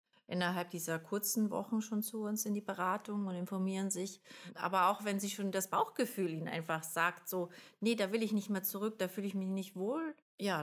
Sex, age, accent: female, 30-49, German